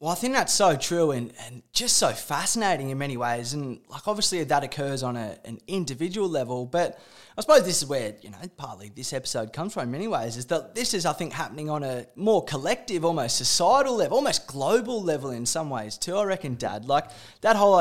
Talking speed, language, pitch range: 220 wpm, English, 135-190 Hz